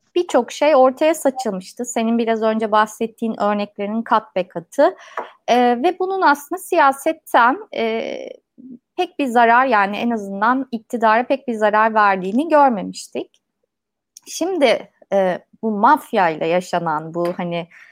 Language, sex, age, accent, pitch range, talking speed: Turkish, female, 30-49, native, 200-290 Hz, 125 wpm